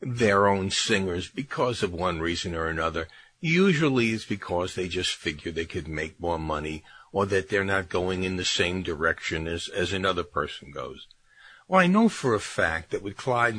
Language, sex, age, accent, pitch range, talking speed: English, male, 50-69, American, 95-150 Hz, 190 wpm